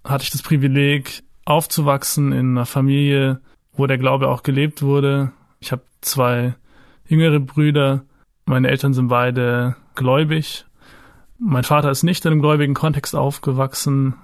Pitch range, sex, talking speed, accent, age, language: 130-145 Hz, male, 140 wpm, German, 20-39, German